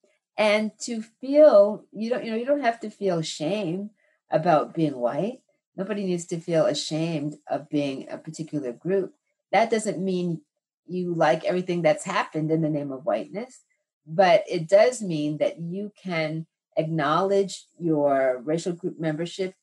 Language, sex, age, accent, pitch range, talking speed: English, female, 40-59, American, 150-200 Hz, 155 wpm